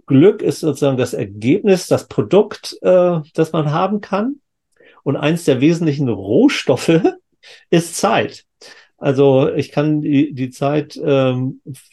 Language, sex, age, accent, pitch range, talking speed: German, male, 50-69, German, 120-150 Hz, 130 wpm